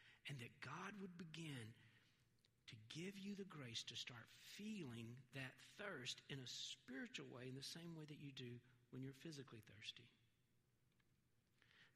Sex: male